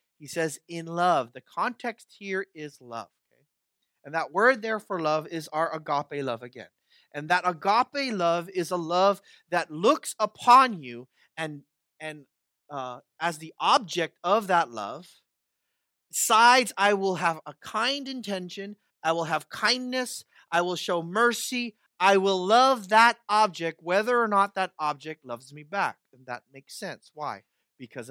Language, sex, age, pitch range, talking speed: English, male, 30-49, 160-240 Hz, 160 wpm